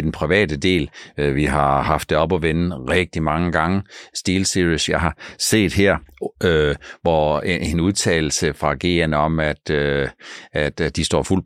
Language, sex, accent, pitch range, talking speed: Danish, male, native, 80-95 Hz, 160 wpm